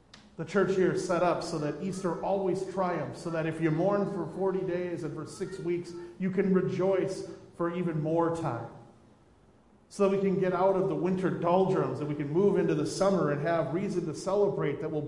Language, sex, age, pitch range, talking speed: English, male, 40-59, 135-175 Hz, 215 wpm